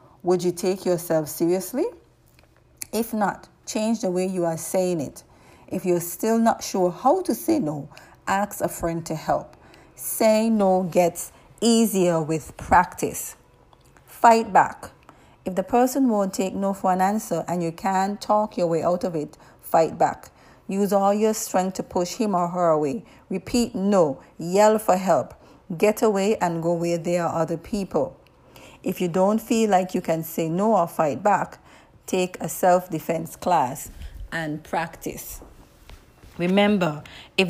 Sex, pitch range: female, 170-210 Hz